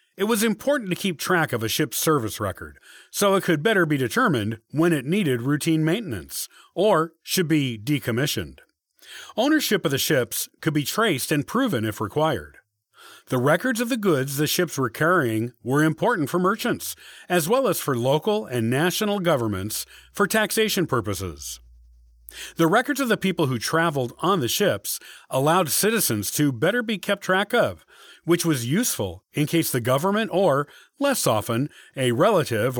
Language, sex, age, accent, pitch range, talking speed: English, male, 40-59, American, 125-190 Hz, 165 wpm